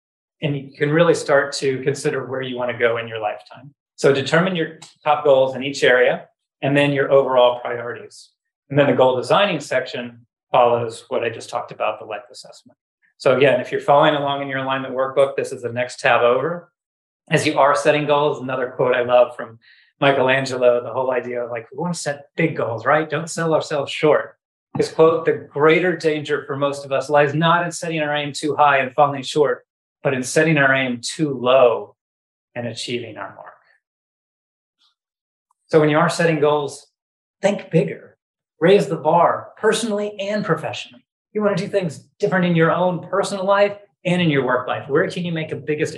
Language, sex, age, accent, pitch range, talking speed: English, male, 30-49, American, 130-165 Hz, 200 wpm